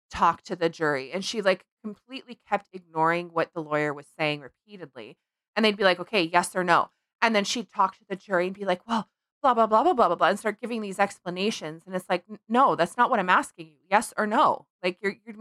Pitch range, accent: 175-240 Hz, American